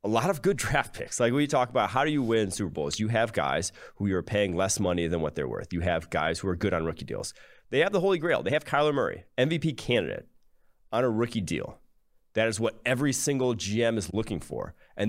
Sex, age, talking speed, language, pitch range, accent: male, 30-49, 245 wpm, English, 90-115 Hz, American